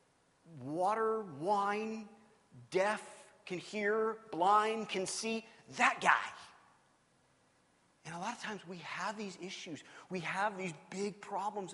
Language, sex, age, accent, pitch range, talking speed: English, male, 30-49, American, 175-220 Hz, 125 wpm